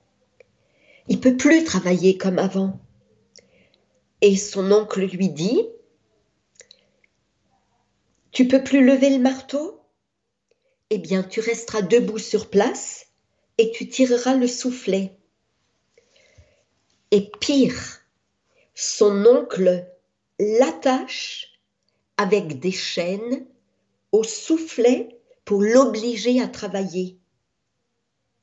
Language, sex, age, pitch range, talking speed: French, female, 50-69, 190-265 Hz, 95 wpm